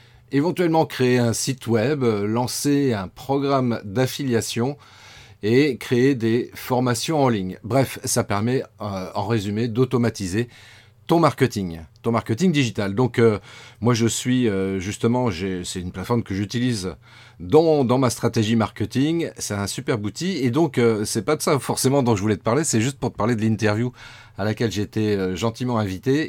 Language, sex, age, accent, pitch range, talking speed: French, male, 30-49, French, 110-130 Hz, 170 wpm